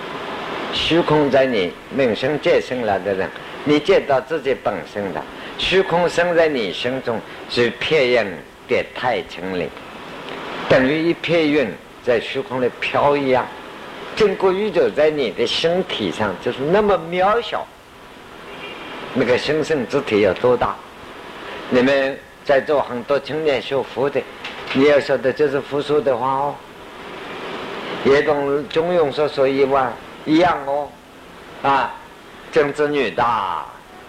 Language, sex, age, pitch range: Chinese, male, 50-69, 125-165 Hz